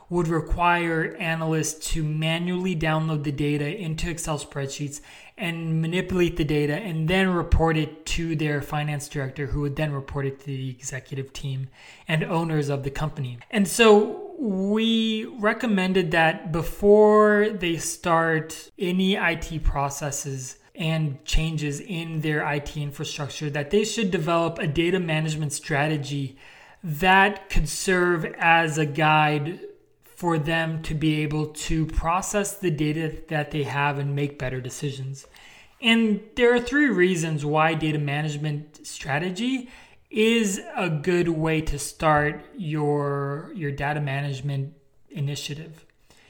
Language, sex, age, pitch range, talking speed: English, male, 20-39, 150-190 Hz, 135 wpm